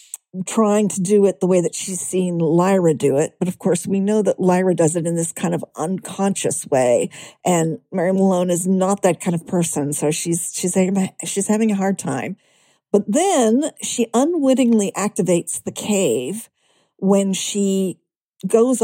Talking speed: 170 wpm